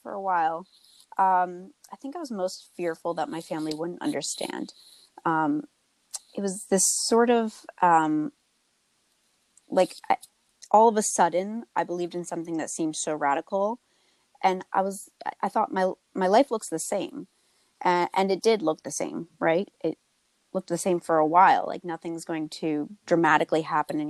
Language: English